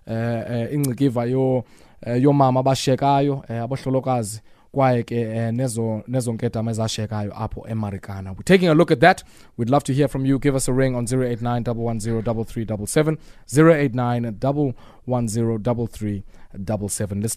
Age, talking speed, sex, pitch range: 20-39, 95 wpm, male, 120-150 Hz